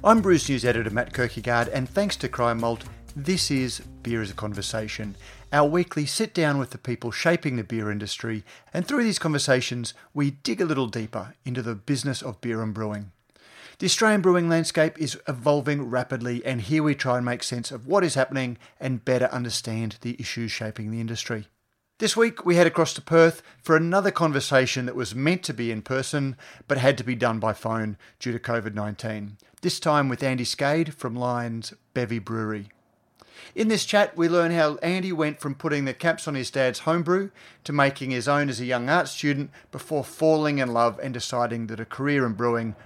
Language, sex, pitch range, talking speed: English, male, 115-155 Hz, 195 wpm